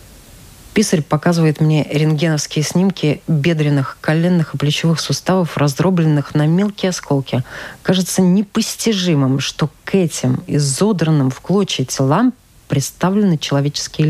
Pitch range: 145-185 Hz